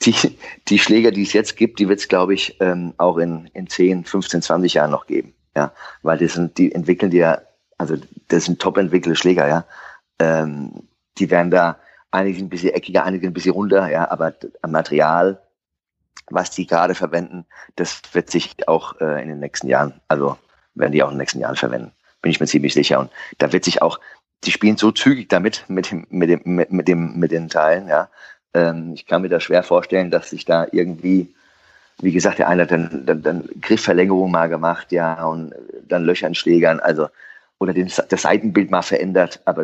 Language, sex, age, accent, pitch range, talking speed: German, male, 30-49, German, 80-95 Hz, 205 wpm